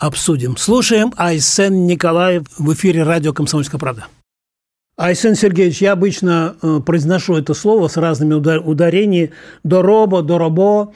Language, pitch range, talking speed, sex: Russian, 150-185 Hz, 115 wpm, male